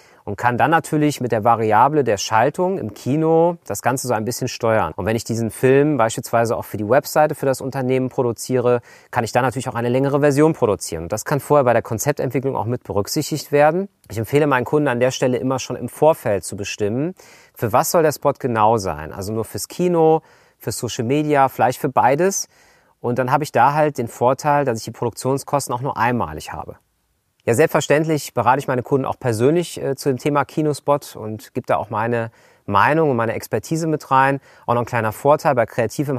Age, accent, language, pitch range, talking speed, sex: 40-59, German, German, 115-150 Hz, 210 wpm, male